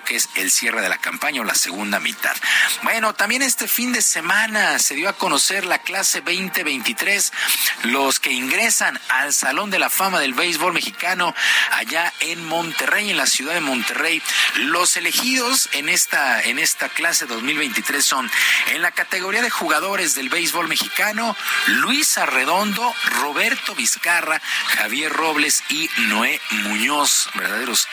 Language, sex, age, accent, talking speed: Spanish, male, 50-69, Mexican, 150 wpm